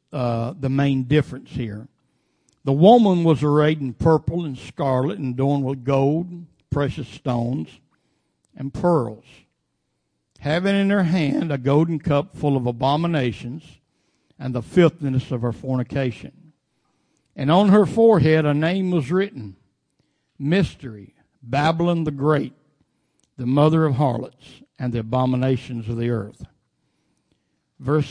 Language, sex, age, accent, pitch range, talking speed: English, male, 60-79, American, 125-155 Hz, 130 wpm